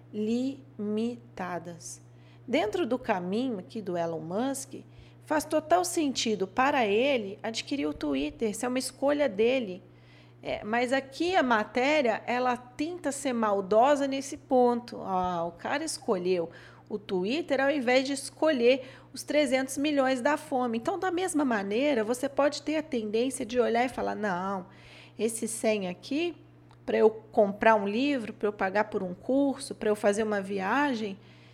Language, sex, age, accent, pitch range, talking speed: Portuguese, female, 40-59, Brazilian, 200-270 Hz, 150 wpm